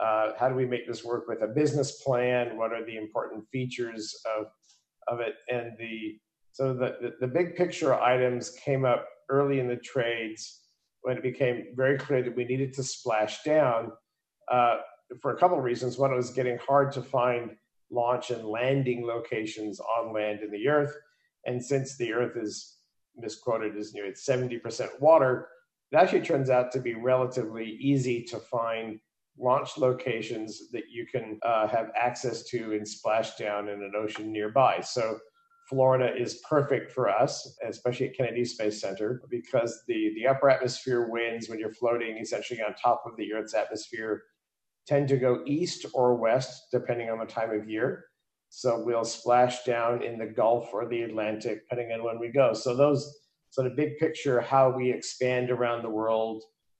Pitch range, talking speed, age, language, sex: 115-130 Hz, 180 wpm, 50-69, English, male